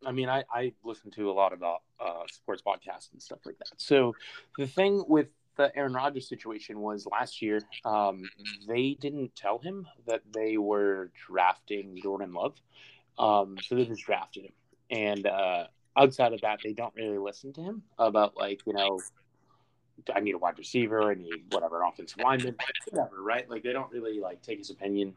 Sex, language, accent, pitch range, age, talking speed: male, English, American, 100-125 Hz, 30-49, 190 wpm